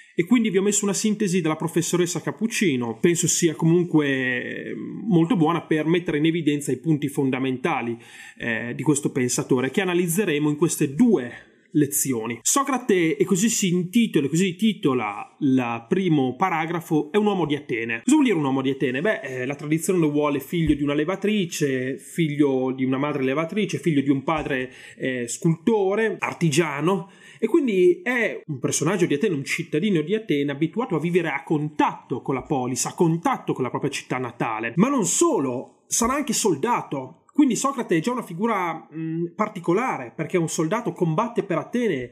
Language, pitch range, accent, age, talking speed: Italian, 145-205 Hz, native, 30-49, 170 wpm